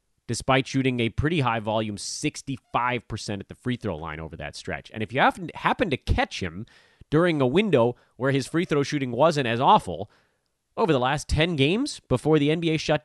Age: 30-49